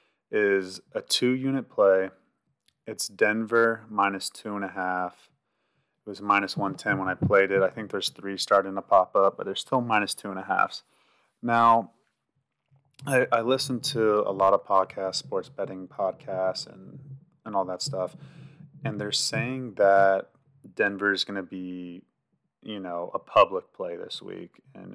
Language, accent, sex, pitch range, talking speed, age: English, American, male, 95-130 Hz, 165 wpm, 30-49